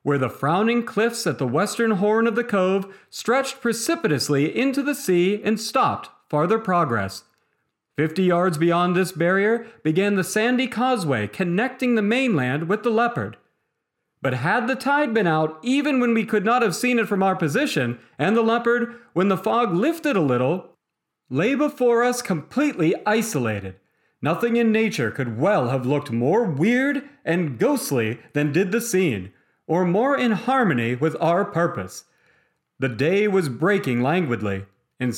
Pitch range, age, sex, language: 140-230 Hz, 40-59, male, English